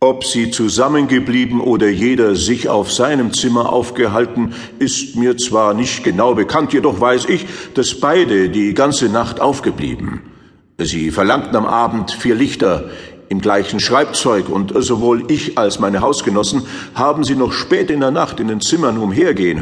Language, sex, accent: German, male, German